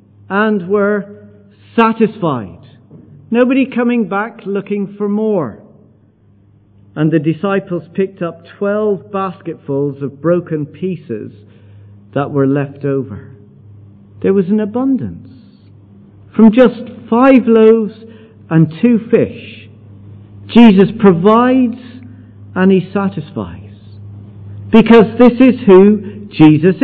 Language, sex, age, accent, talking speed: English, male, 50-69, British, 100 wpm